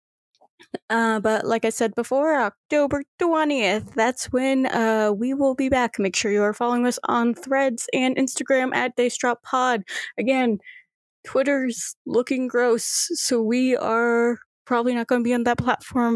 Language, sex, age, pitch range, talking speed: English, female, 20-39, 210-260 Hz, 160 wpm